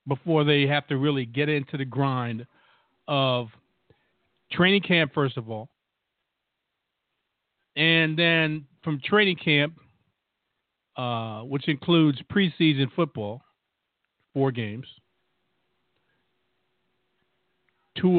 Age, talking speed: 50-69, 90 wpm